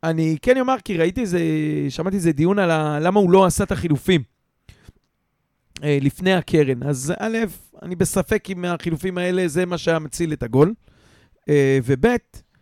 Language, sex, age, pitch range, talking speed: Hebrew, male, 40-59, 155-200 Hz, 155 wpm